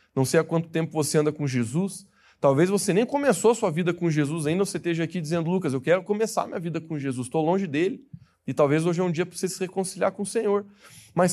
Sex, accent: male, Brazilian